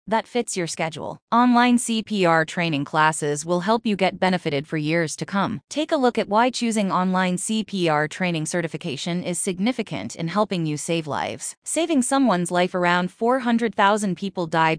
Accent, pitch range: American, 170-230 Hz